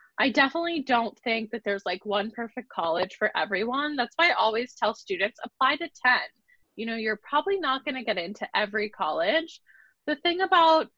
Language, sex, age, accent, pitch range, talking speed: English, female, 20-39, American, 215-275 Hz, 190 wpm